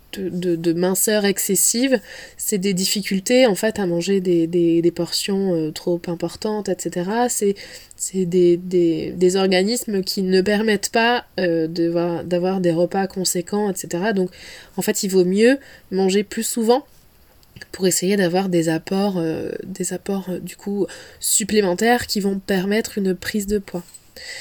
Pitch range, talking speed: 175-210 Hz, 160 wpm